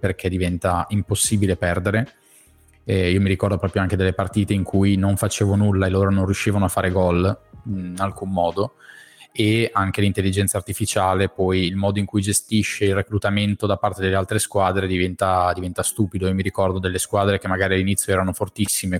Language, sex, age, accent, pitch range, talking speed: Italian, male, 20-39, native, 95-105 Hz, 180 wpm